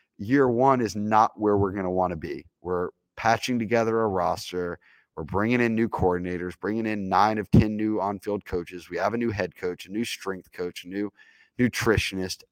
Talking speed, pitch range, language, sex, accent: 200 wpm, 90-115 Hz, English, male, American